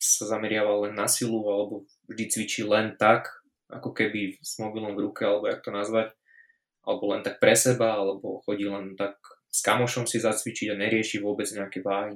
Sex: male